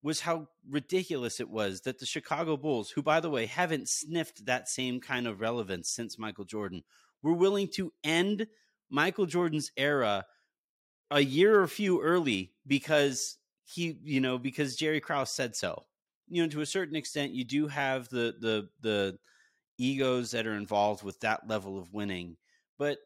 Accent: American